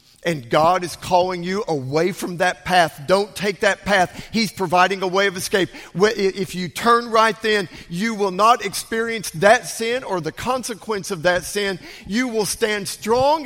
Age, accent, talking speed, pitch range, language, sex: 50-69, American, 180 wpm, 175-220 Hz, English, male